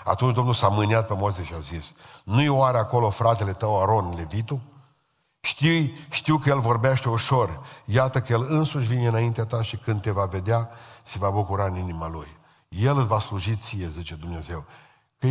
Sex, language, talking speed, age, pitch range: male, Romanian, 180 wpm, 50-69, 105-135 Hz